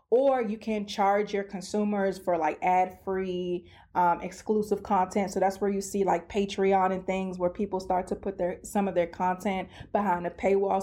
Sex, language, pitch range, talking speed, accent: female, English, 185-220 Hz, 190 wpm, American